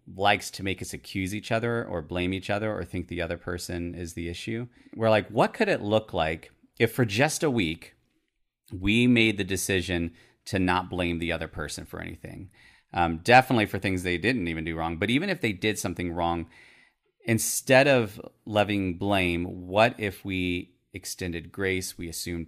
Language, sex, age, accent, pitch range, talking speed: English, male, 30-49, American, 90-110 Hz, 185 wpm